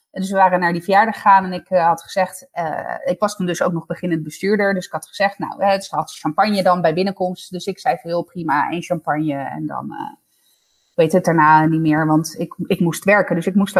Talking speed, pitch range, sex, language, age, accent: 245 wpm, 180-220 Hz, female, Dutch, 20-39, Dutch